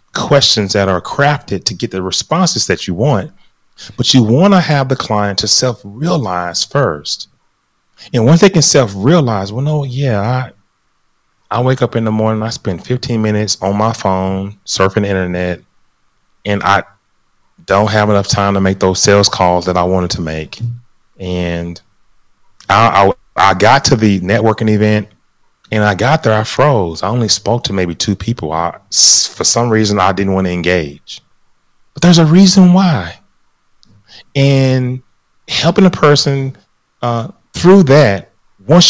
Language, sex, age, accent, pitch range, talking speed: English, male, 30-49, American, 95-130 Hz, 160 wpm